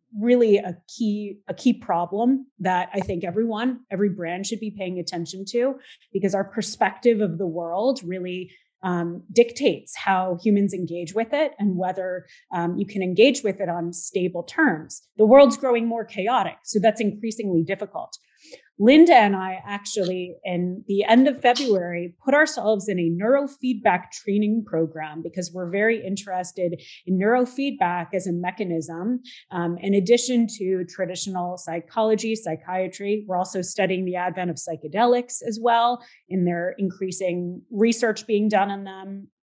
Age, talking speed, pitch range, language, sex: 30-49, 150 wpm, 180-225 Hz, English, female